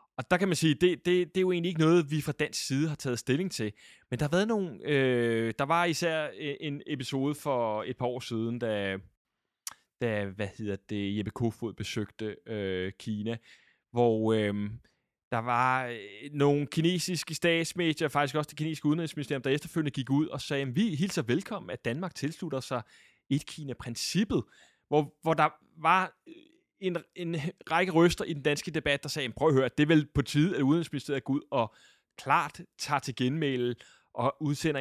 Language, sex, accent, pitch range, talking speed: Danish, male, native, 120-160 Hz, 190 wpm